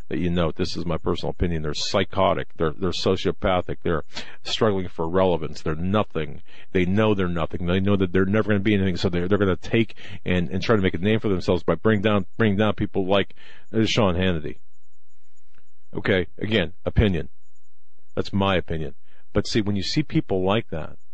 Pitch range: 85-105 Hz